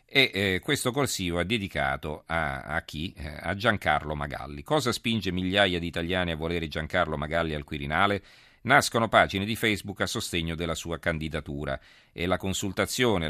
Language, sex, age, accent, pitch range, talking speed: Italian, male, 40-59, native, 80-100 Hz, 160 wpm